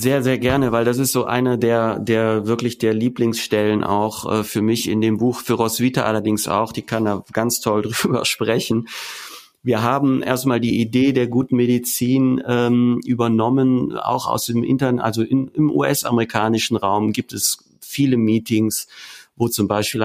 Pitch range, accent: 105-120 Hz, German